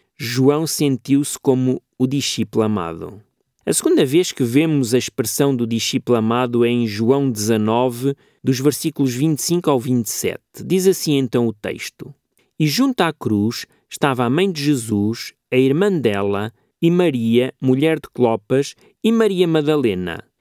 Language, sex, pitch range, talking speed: Portuguese, male, 120-160 Hz, 145 wpm